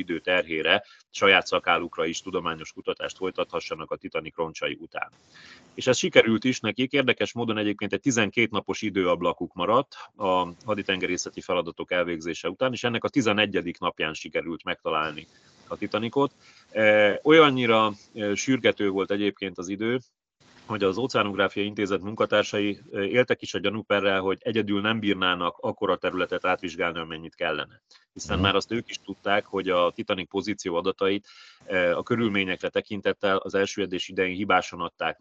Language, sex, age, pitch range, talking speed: Hungarian, male, 30-49, 95-115 Hz, 140 wpm